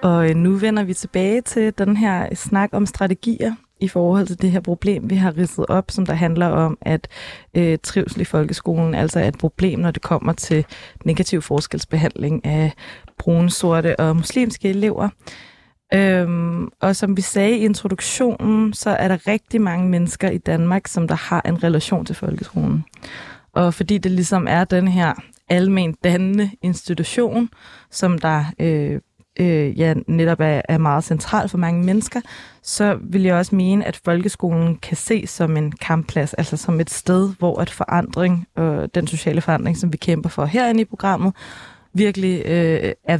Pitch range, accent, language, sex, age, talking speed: 165-200 Hz, native, Danish, female, 20-39, 165 wpm